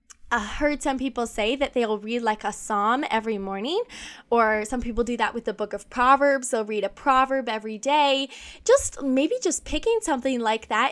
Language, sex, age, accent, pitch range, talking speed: English, female, 10-29, American, 225-285 Hz, 200 wpm